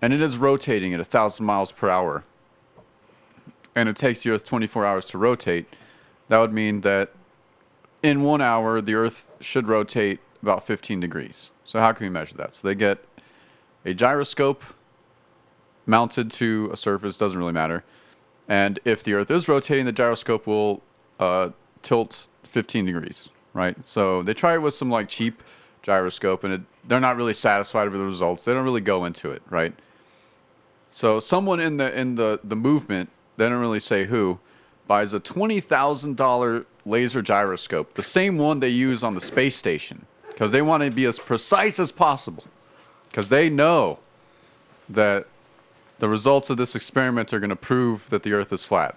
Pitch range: 100-130 Hz